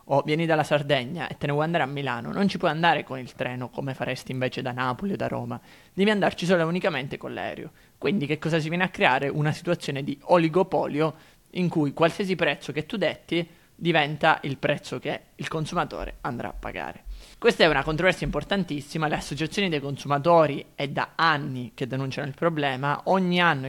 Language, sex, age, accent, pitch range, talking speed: Italian, male, 20-39, native, 140-165 Hz, 200 wpm